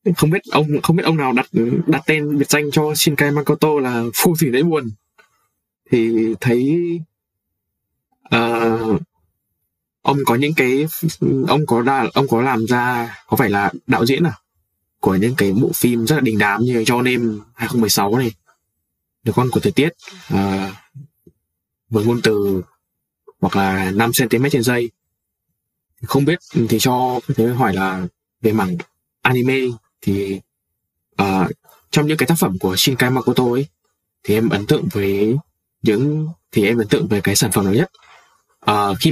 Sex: male